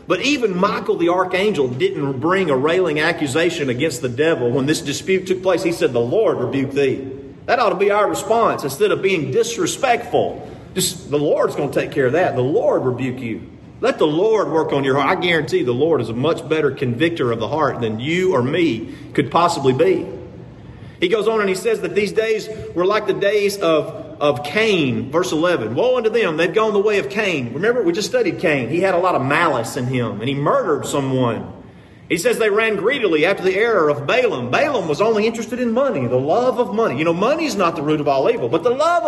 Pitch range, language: 150-220 Hz, English